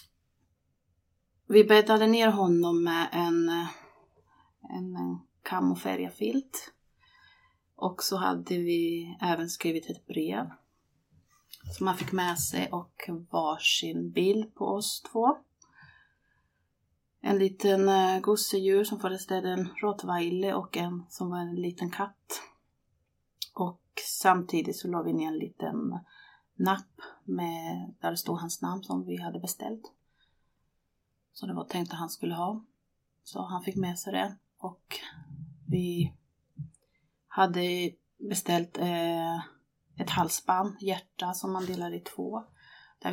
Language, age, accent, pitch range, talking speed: Swedish, 30-49, native, 155-185 Hz, 125 wpm